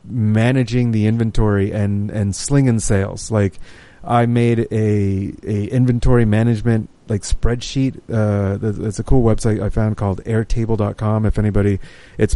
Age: 30-49